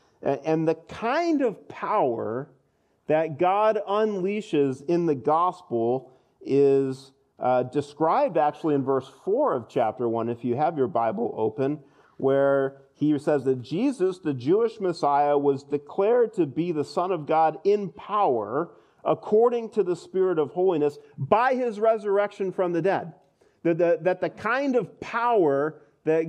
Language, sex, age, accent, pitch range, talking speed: English, male, 40-59, American, 140-195 Hz, 145 wpm